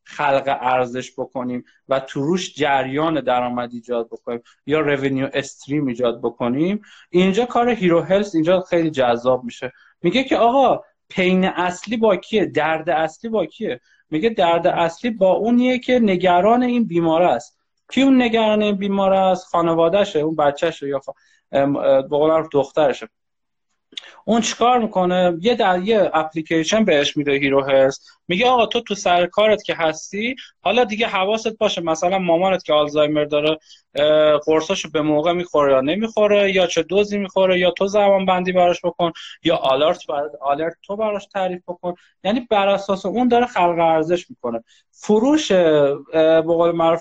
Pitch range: 150-200 Hz